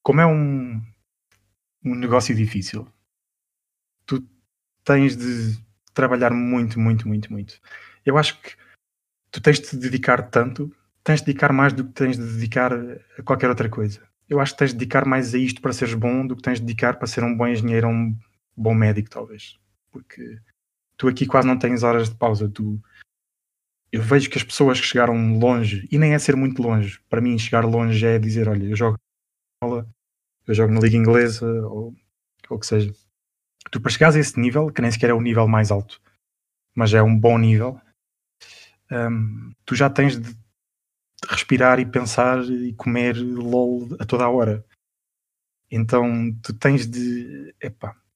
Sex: male